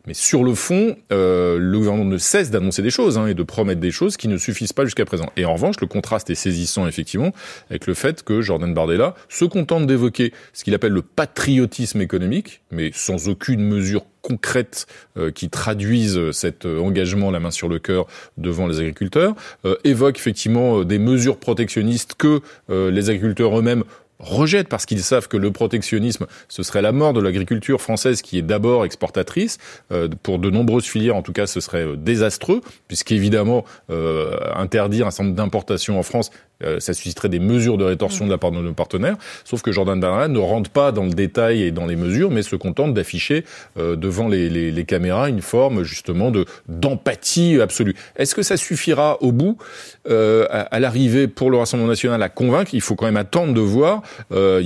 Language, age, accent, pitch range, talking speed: French, 30-49, French, 90-120 Hz, 195 wpm